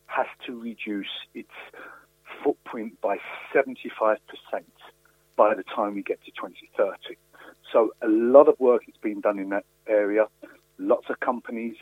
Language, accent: English, British